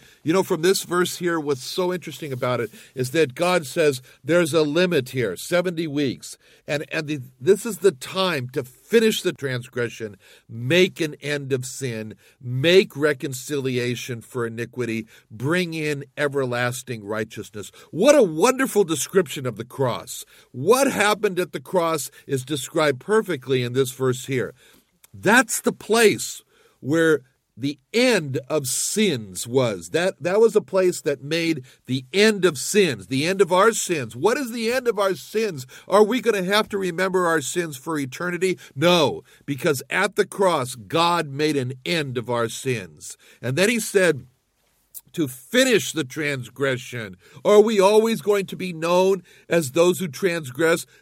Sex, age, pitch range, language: male, 60-79, 130-185 Hz, English